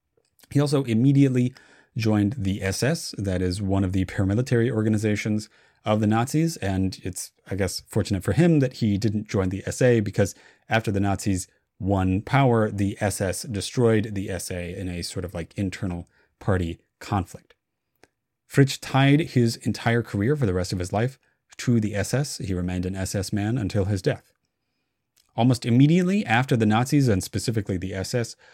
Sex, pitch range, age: male, 100-125 Hz, 30-49